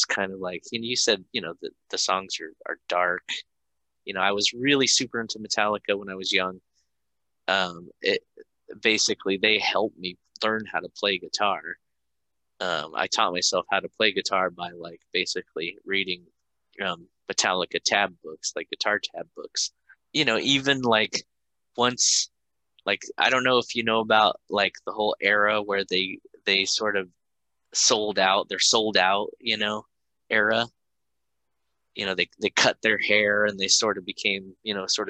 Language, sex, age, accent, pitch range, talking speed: English, male, 20-39, American, 65-105 Hz, 175 wpm